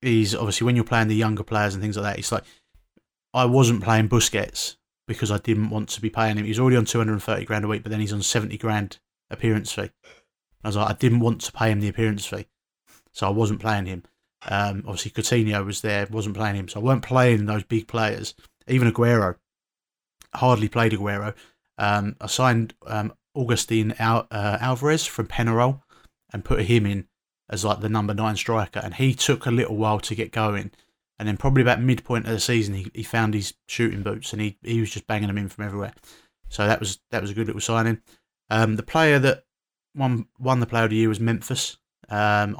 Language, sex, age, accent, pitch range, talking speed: English, male, 30-49, British, 105-120 Hz, 215 wpm